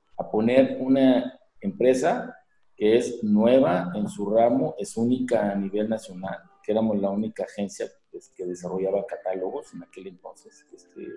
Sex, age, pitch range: male, 50-69, 100-130 Hz